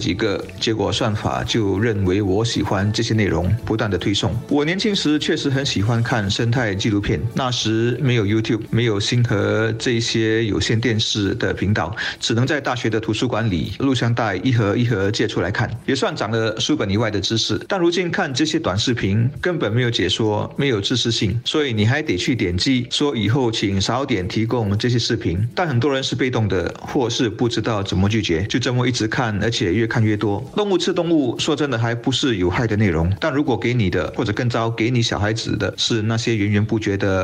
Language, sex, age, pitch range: Chinese, male, 50-69, 105-125 Hz